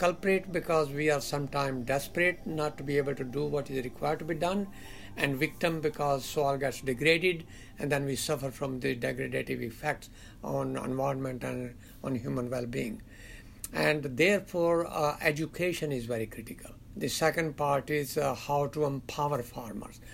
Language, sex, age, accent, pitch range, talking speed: English, male, 60-79, Indian, 130-170 Hz, 160 wpm